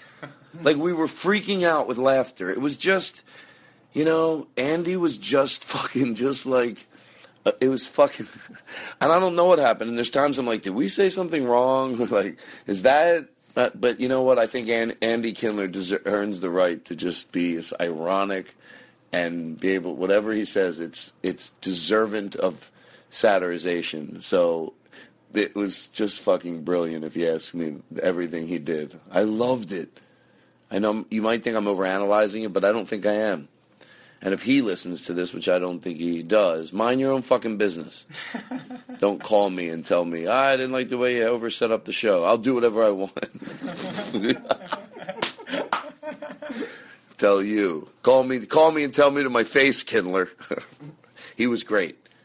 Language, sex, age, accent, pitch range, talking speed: English, male, 40-59, American, 95-145 Hz, 180 wpm